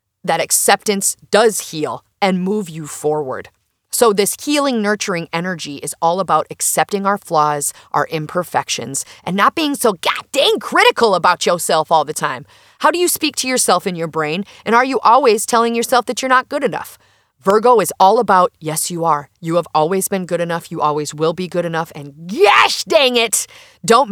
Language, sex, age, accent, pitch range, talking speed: English, female, 30-49, American, 165-235 Hz, 190 wpm